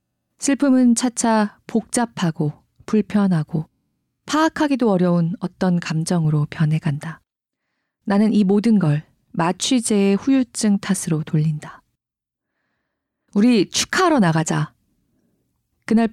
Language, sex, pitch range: Korean, female, 165-230 Hz